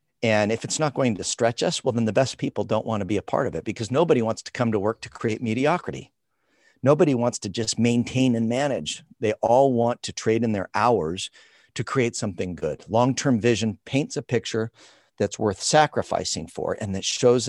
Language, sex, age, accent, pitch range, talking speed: English, male, 50-69, American, 105-125 Hz, 210 wpm